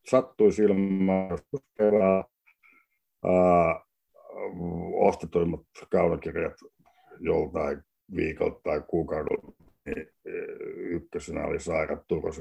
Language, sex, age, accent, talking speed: Finnish, male, 60-79, native, 65 wpm